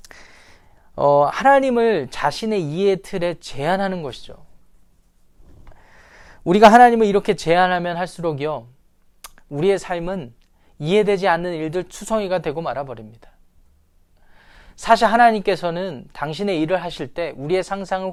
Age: 20-39